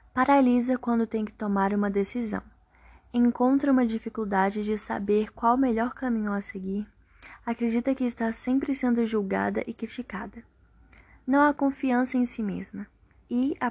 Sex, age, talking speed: female, 10-29, 150 wpm